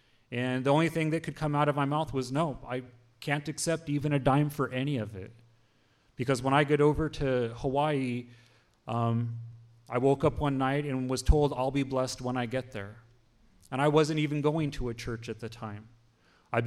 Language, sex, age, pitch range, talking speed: English, male, 30-49, 120-140 Hz, 210 wpm